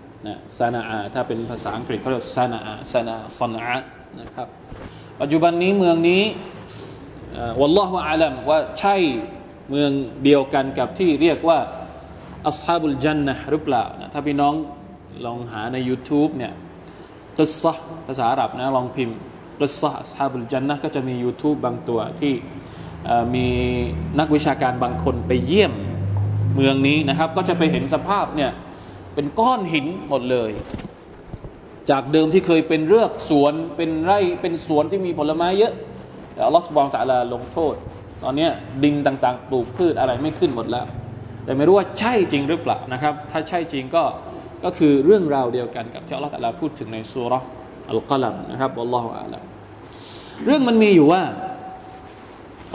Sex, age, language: male, 20-39, Thai